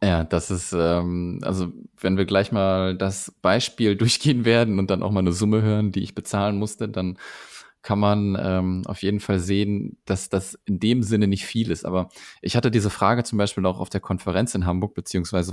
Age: 20-39